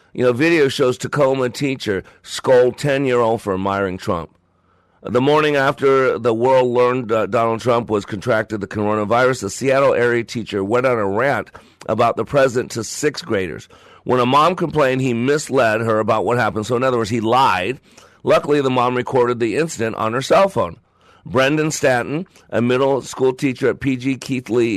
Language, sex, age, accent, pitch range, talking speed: English, male, 50-69, American, 110-135 Hz, 175 wpm